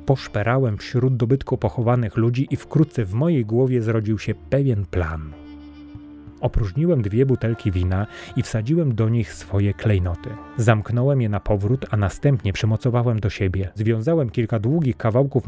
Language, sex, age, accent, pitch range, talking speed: Polish, male, 30-49, native, 100-130 Hz, 145 wpm